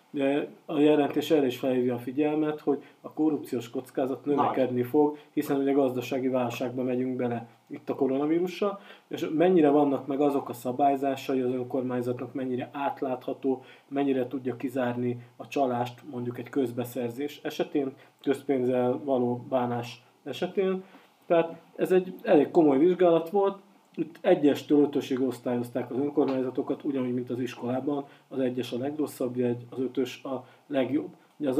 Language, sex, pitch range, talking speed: Hungarian, male, 125-145 Hz, 140 wpm